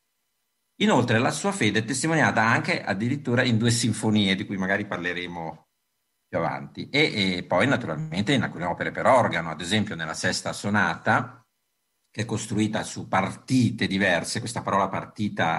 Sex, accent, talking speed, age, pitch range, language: male, native, 155 wpm, 50-69, 80-105 Hz, Italian